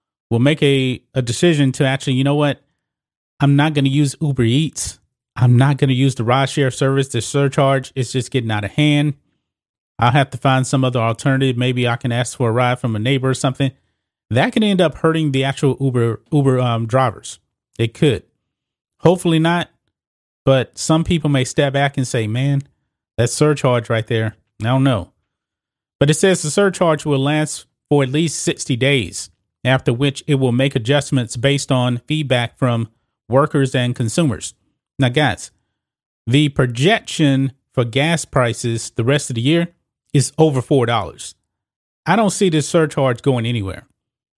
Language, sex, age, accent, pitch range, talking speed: English, male, 30-49, American, 125-145 Hz, 180 wpm